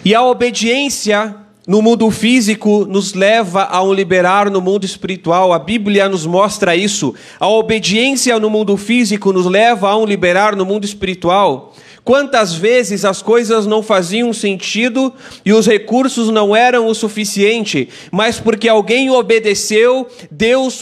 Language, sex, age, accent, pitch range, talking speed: Portuguese, male, 30-49, Brazilian, 200-240 Hz, 145 wpm